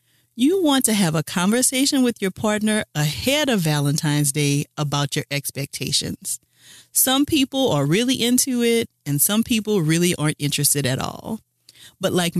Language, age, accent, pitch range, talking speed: English, 40-59, American, 145-225 Hz, 155 wpm